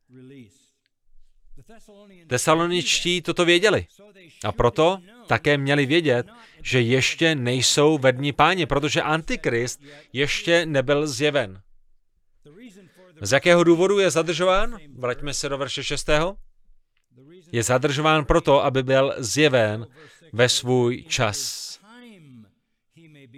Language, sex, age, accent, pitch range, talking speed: Czech, male, 30-49, native, 125-165 Hz, 95 wpm